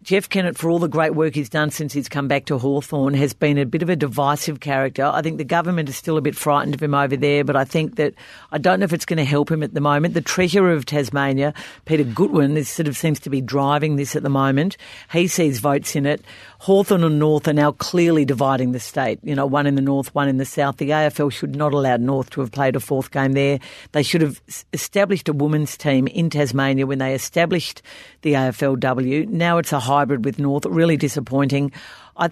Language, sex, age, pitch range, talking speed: English, female, 50-69, 140-165 Hz, 240 wpm